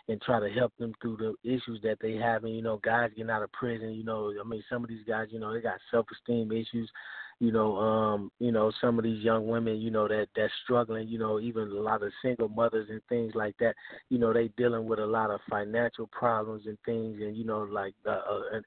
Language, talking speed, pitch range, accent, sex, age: English, 240 wpm, 110-125 Hz, American, male, 20-39